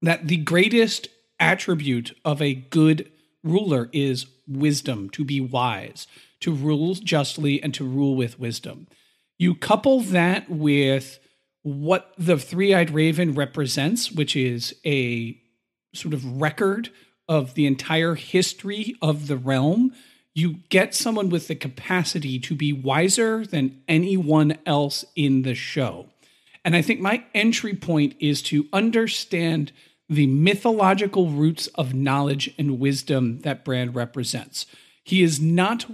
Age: 40-59